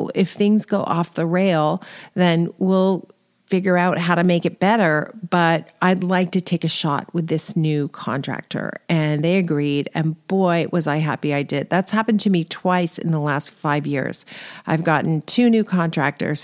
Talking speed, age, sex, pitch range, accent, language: 185 wpm, 40-59, female, 155-195 Hz, American, English